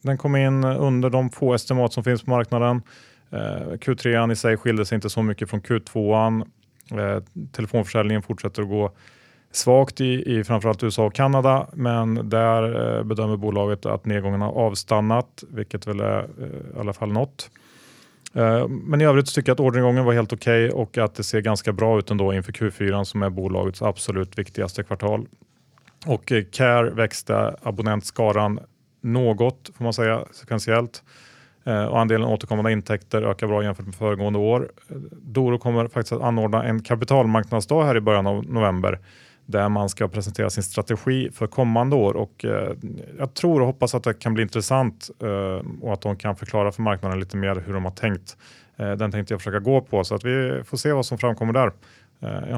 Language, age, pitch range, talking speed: Swedish, 30-49, 105-125 Hz, 180 wpm